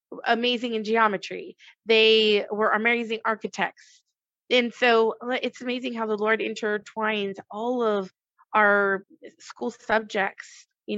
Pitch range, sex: 210-245 Hz, female